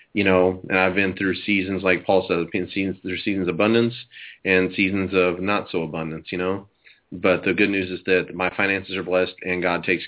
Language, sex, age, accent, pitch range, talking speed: English, male, 30-49, American, 90-105 Hz, 215 wpm